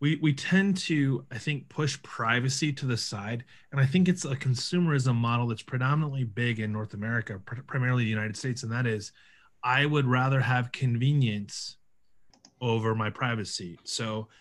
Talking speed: 170 wpm